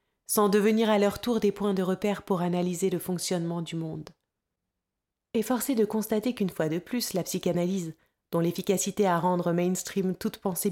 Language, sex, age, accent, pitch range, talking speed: French, female, 30-49, French, 170-205 Hz, 175 wpm